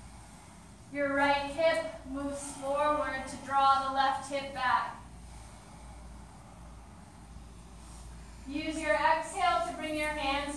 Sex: female